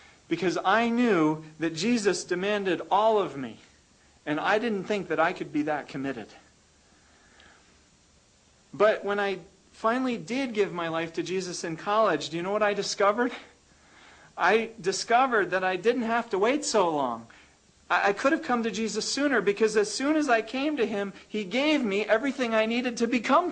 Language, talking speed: English, 180 wpm